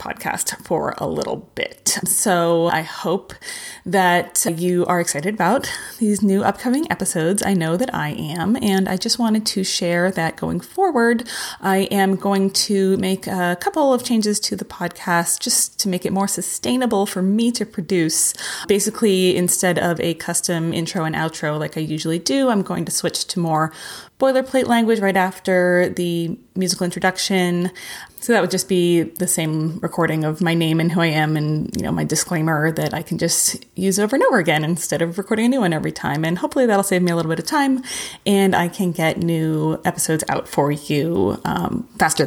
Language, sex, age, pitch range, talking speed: English, female, 30-49, 165-200 Hz, 195 wpm